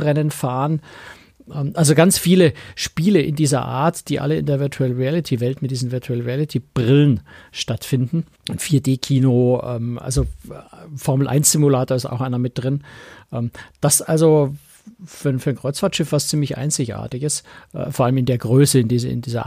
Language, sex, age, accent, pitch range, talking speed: German, male, 50-69, German, 120-150 Hz, 160 wpm